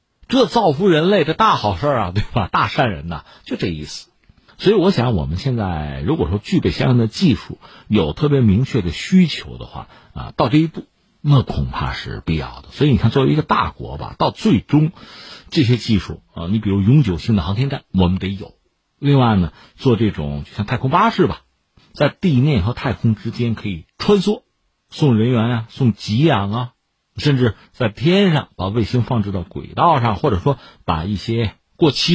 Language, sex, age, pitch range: Chinese, male, 50-69, 95-145 Hz